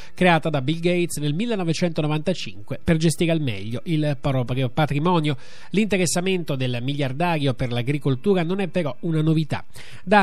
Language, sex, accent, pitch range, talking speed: Italian, male, native, 130-175 Hz, 140 wpm